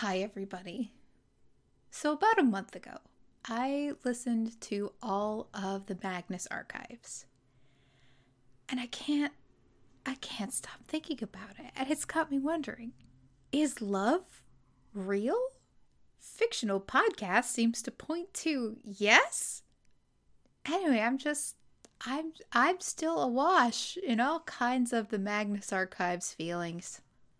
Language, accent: English, American